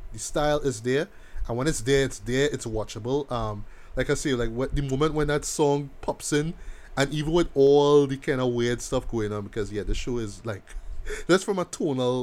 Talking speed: 225 wpm